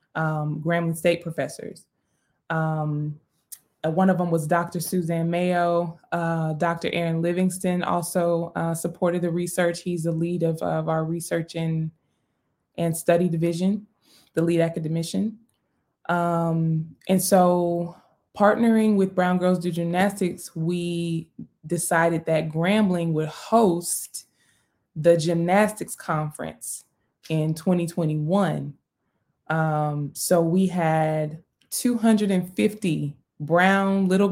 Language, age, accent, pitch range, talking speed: English, 20-39, American, 160-185 Hz, 110 wpm